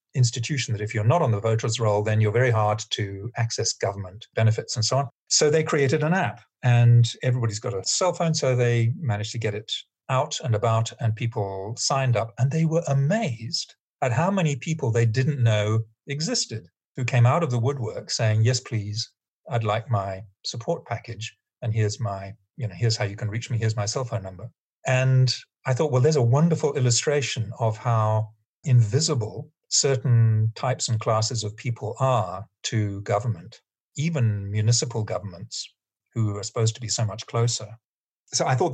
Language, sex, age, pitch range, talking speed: English, male, 40-59, 110-130 Hz, 185 wpm